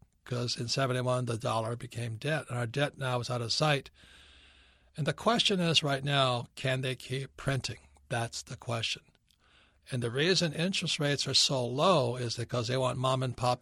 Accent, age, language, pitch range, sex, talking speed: American, 60-79, English, 120-145 Hz, male, 190 wpm